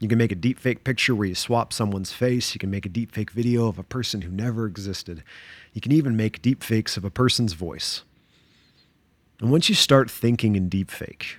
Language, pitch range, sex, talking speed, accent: English, 95-120 Hz, male, 205 wpm, American